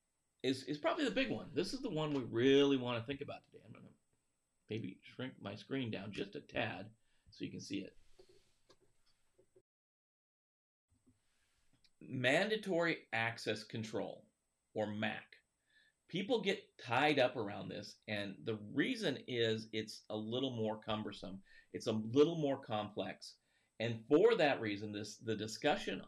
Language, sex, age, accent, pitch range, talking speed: English, male, 40-59, American, 105-140 Hz, 150 wpm